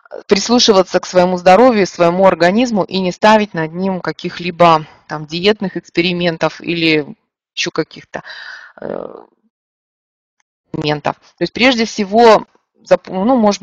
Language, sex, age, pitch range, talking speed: Russian, female, 20-39, 165-205 Hz, 100 wpm